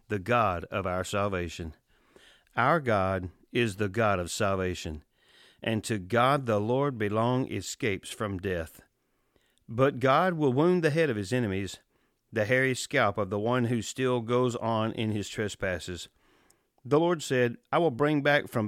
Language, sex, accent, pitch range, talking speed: English, male, American, 105-135 Hz, 165 wpm